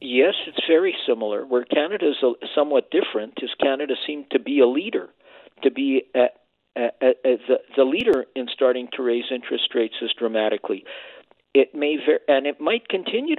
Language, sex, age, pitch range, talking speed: English, male, 50-69, 125-180 Hz, 180 wpm